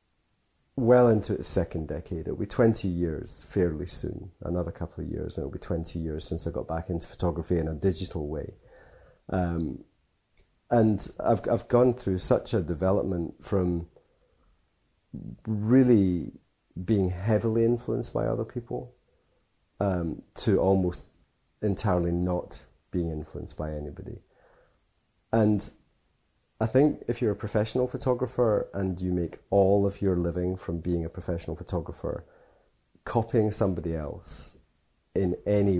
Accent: British